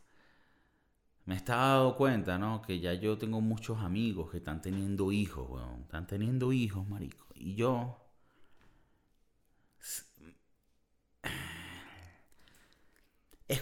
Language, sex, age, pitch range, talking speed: Spanish, male, 30-49, 105-160 Hz, 105 wpm